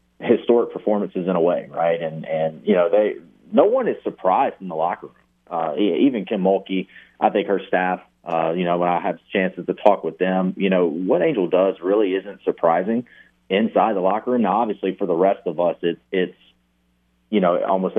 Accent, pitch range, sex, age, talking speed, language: American, 80-95 Hz, male, 30-49, 205 wpm, English